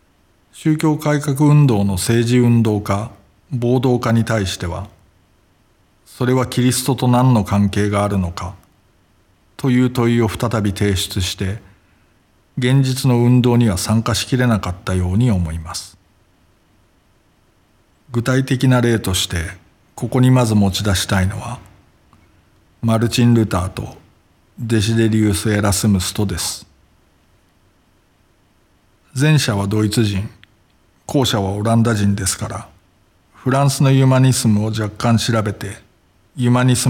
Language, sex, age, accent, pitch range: Japanese, male, 50-69, native, 100-120 Hz